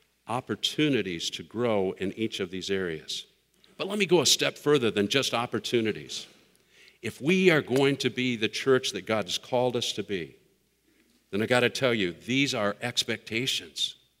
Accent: American